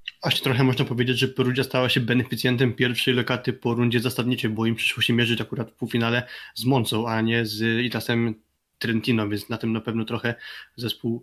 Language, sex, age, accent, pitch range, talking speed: Polish, male, 20-39, native, 115-130 Hz, 190 wpm